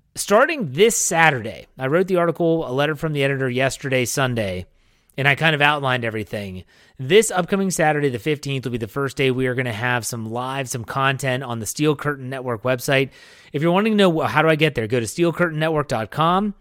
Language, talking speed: English, 210 wpm